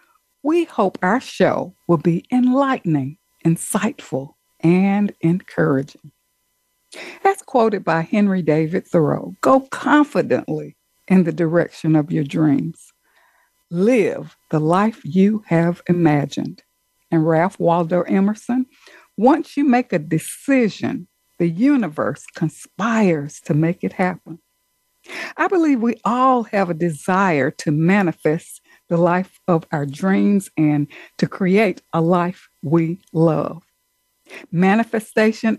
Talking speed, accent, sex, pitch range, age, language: 115 wpm, American, female, 170-255 Hz, 60-79, English